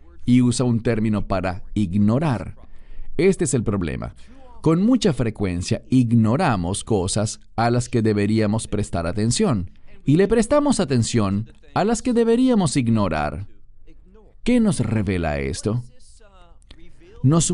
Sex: male